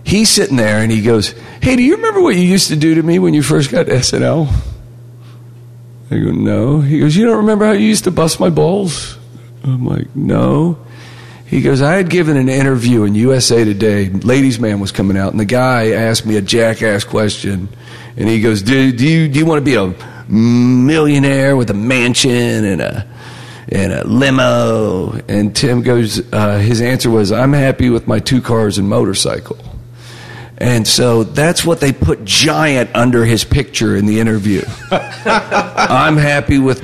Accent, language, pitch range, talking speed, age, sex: American, English, 115-145 Hz, 180 wpm, 40-59, male